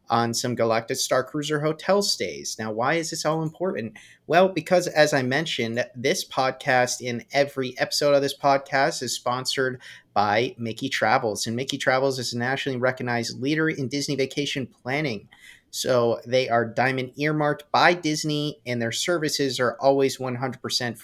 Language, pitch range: English, 115-140 Hz